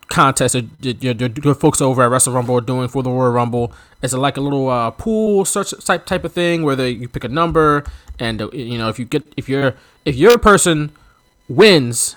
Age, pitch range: 20-39, 125-155 Hz